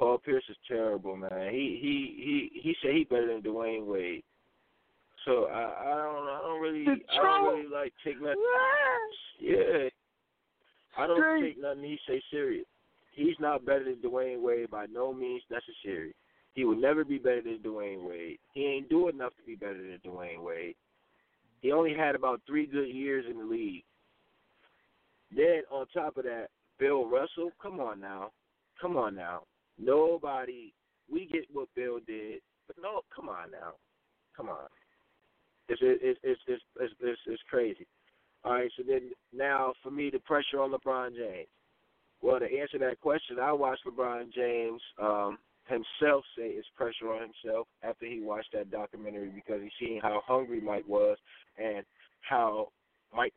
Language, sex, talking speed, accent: English, male, 170 wpm, American